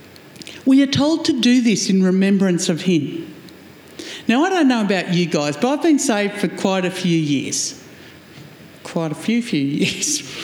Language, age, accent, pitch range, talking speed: English, 60-79, Australian, 175-255 Hz, 180 wpm